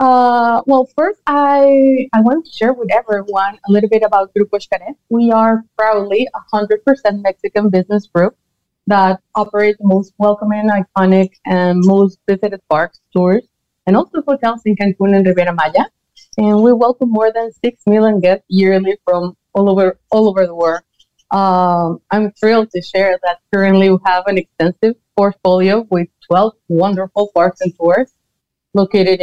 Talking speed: 160 wpm